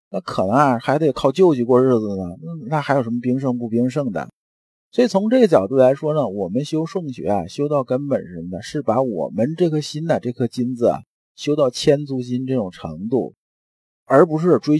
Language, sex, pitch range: Chinese, male, 120-160 Hz